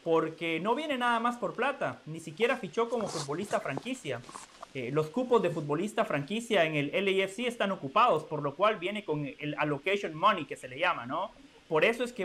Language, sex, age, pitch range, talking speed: Spanish, male, 30-49, 165-235 Hz, 200 wpm